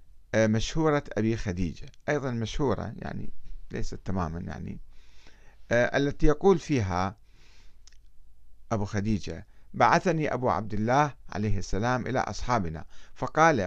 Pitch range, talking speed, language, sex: 105-150 Hz, 105 wpm, Arabic, male